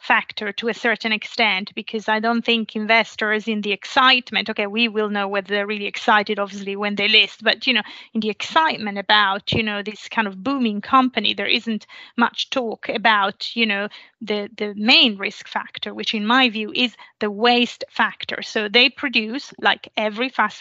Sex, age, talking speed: female, 30-49, 190 wpm